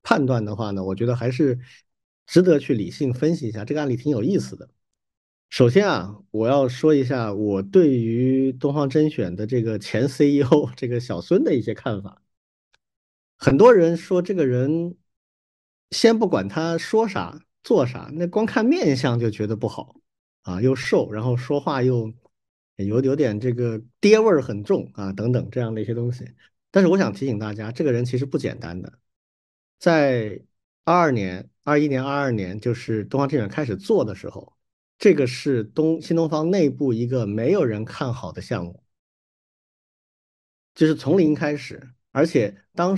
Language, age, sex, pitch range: Chinese, 50-69, male, 110-155 Hz